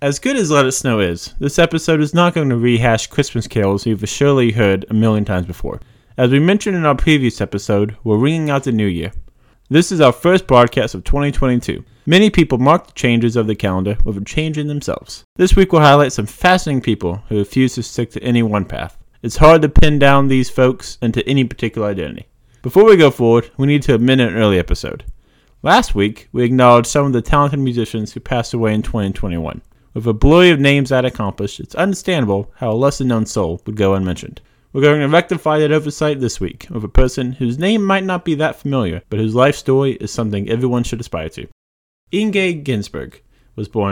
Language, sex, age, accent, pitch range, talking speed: English, male, 30-49, American, 105-140 Hz, 210 wpm